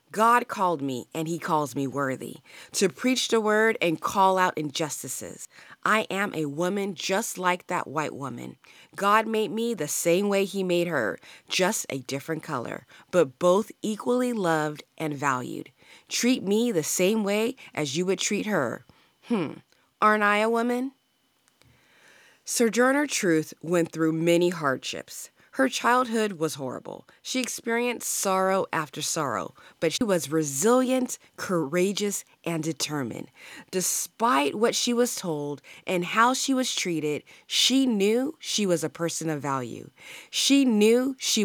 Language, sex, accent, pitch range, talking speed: English, female, American, 155-225 Hz, 150 wpm